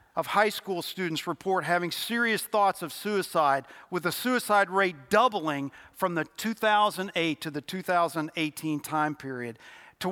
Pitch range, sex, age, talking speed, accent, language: 160-215 Hz, male, 50-69, 140 wpm, American, English